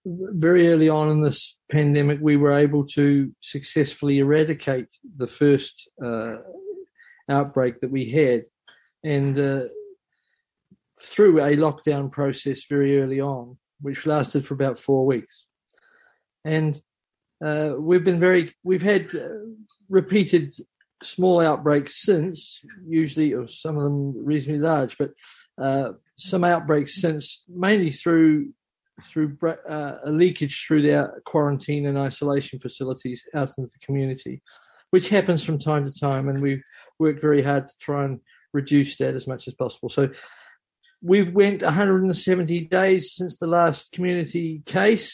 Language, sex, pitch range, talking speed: English, male, 140-175 Hz, 140 wpm